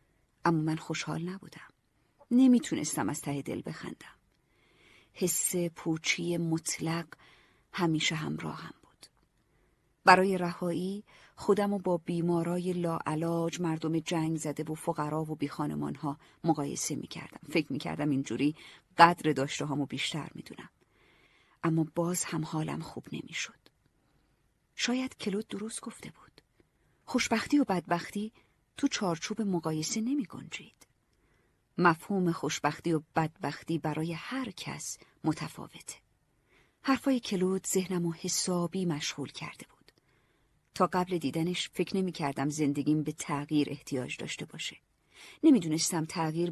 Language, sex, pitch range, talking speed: Persian, female, 155-185 Hz, 110 wpm